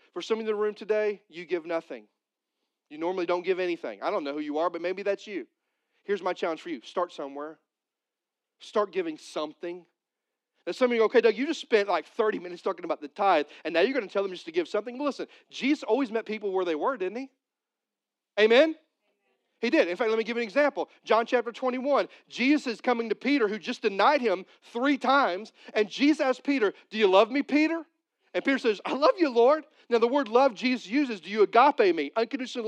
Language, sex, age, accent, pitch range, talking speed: English, male, 40-59, American, 205-295 Hz, 235 wpm